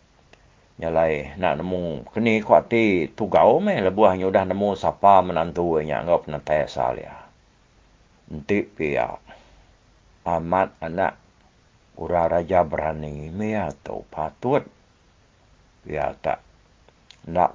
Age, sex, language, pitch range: 60-79, male, English, 80-105 Hz